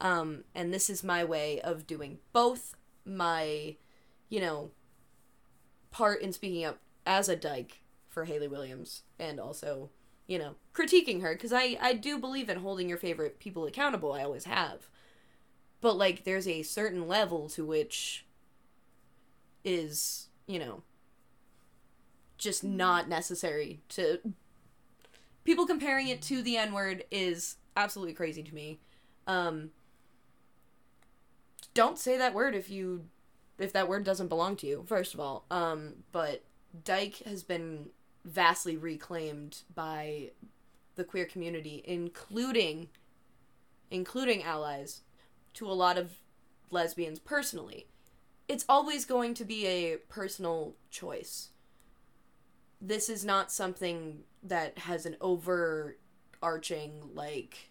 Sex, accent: female, American